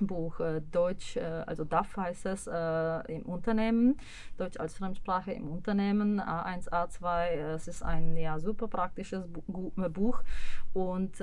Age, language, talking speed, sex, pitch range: 30-49, Czech, 130 wpm, female, 170-200 Hz